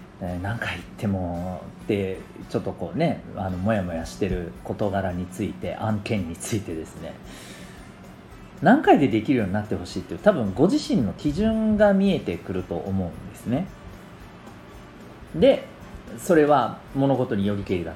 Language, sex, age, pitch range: Japanese, male, 40-59, 95-150 Hz